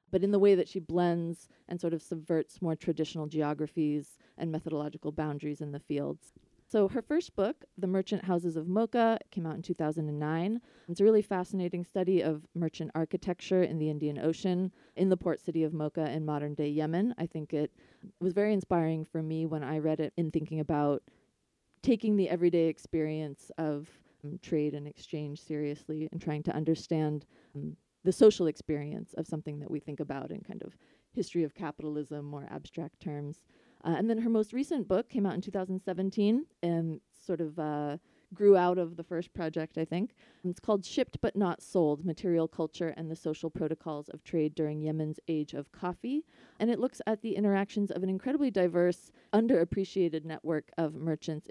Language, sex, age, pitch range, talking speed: English, female, 30-49, 155-185 Hz, 185 wpm